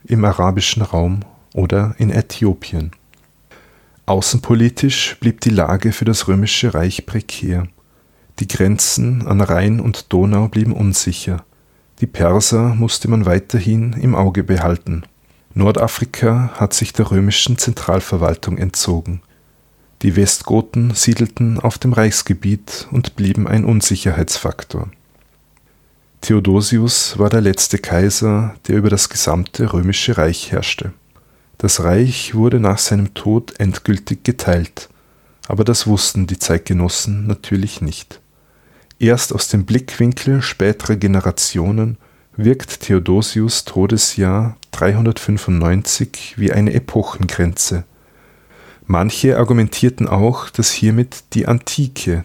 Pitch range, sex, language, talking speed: 95-115 Hz, male, German, 110 wpm